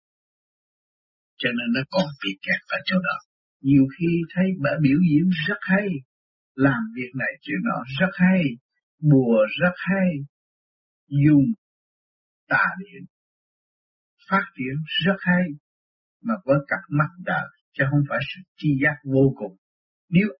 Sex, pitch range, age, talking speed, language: male, 135-190 Hz, 60-79, 140 wpm, Vietnamese